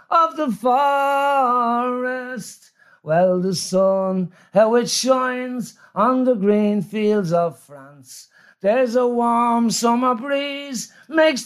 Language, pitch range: English, 215-290 Hz